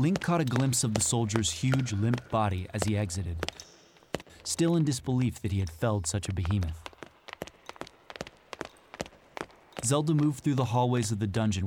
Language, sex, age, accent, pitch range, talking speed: English, male, 30-49, American, 100-130 Hz, 160 wpm